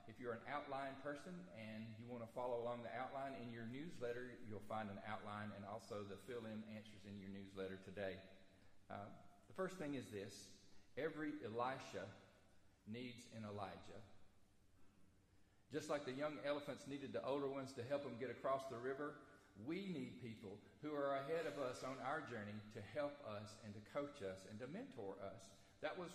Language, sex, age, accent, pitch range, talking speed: English, male, 40-59, American, 105-140 Hz, 185 wpm